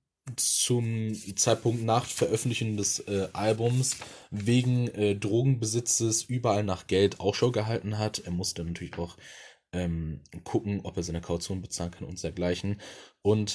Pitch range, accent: 90-110 Hz, German